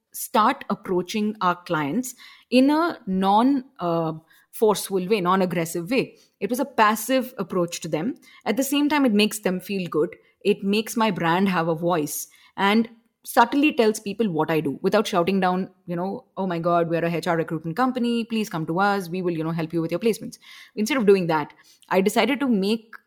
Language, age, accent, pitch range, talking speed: English, 20-39, Indian, 175-230 Hz, 195 wpm